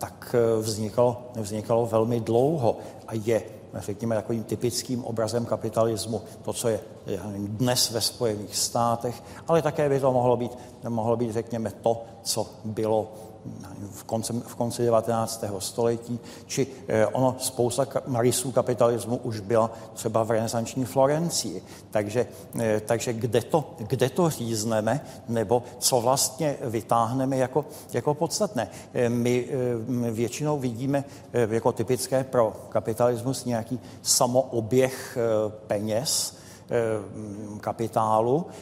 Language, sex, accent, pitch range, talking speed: Czech, male, native, 115-140 Hz, 110 wpm